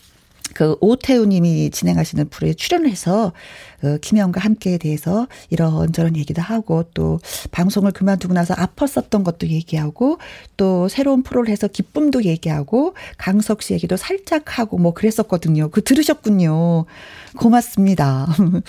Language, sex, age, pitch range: Korean, female, 40-59, 180-250 Hz